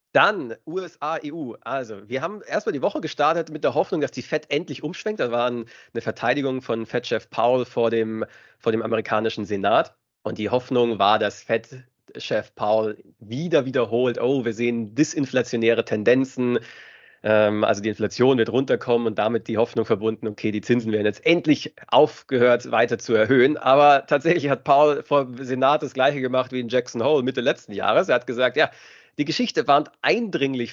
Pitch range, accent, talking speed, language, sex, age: 115-135 Hz, German, 175 wpm, German, male, 30-49